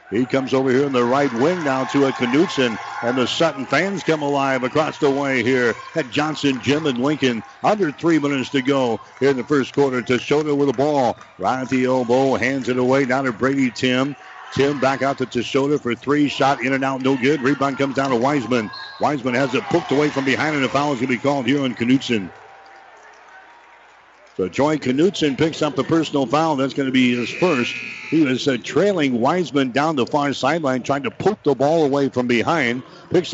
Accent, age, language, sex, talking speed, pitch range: American, 60-79, English, male, 215 wpm, 125-145 Hz